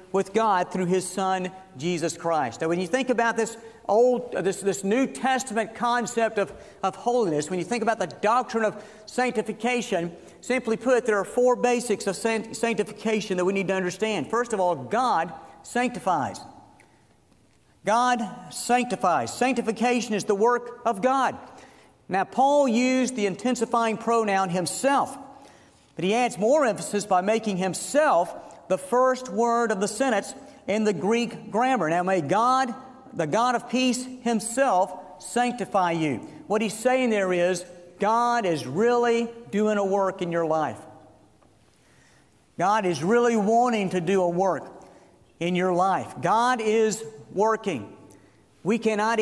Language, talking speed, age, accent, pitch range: English, 150 wpm, 50-69, American, 185-235 Hz